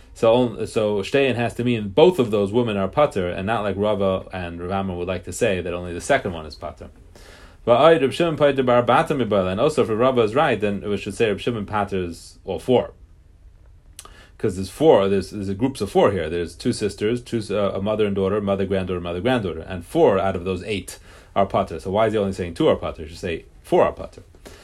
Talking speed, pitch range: 215 wpm, 100-140 Hz